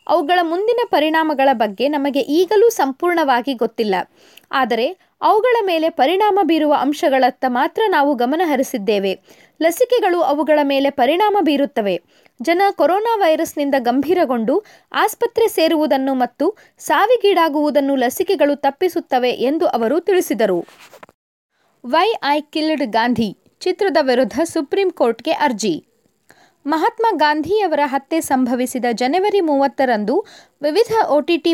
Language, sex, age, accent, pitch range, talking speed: Kannada, female, 20-39, native, 260-365 Hz, 95 wpm